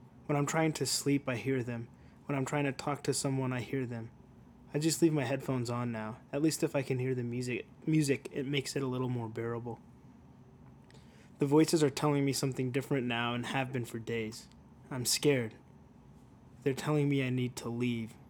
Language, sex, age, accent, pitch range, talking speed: English, male, 20-39, American, 120-150 Hz, 205 wpm